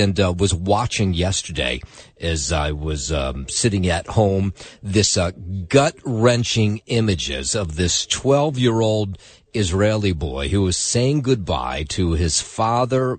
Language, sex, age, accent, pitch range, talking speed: English, male, 40-59, American, 95-115 Hz, 125 wpm